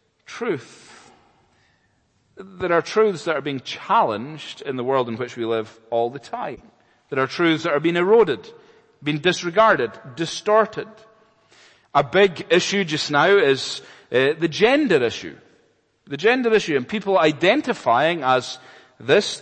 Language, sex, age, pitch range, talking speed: English, male, 40-59, 125-185 Hz, 140 wpm